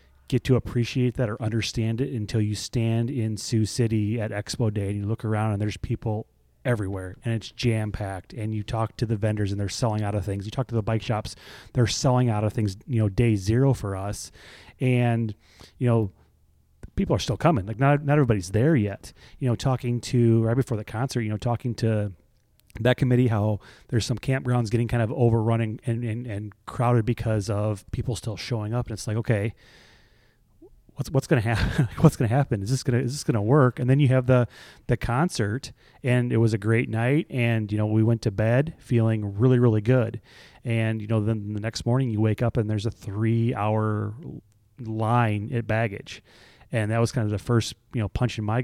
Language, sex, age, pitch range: English, male, 30-49, 105-120 Hz